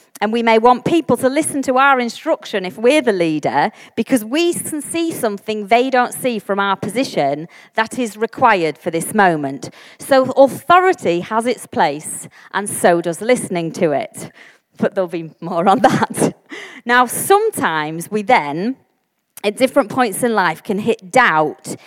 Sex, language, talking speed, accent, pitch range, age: female, English, 165 wpm, British, 175-250 Hz, 30-49